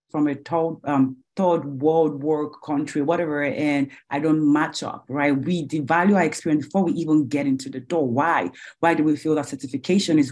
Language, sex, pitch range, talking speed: English, female, 150-195 Hz, 190 wpm